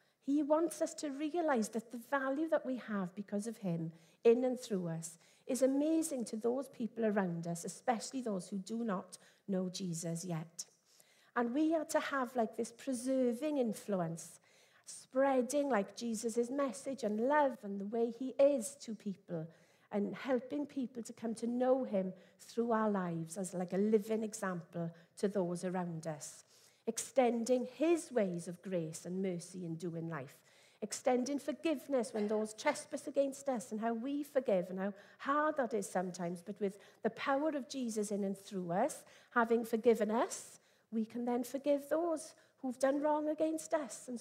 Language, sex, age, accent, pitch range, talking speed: English, female, 50-69, British, 190-270 Hz, 170 wpm